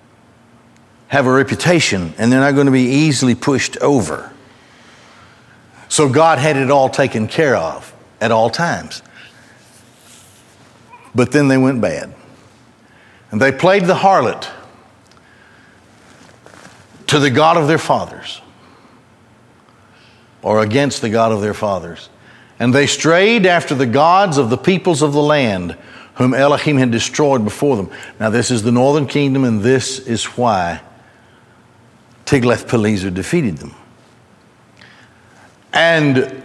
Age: 60-79